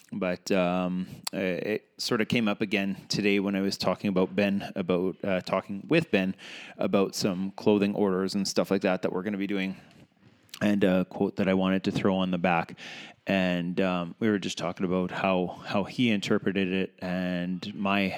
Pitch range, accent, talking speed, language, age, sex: 90-105 Hz, American, 200 wpm, English, 20-39, male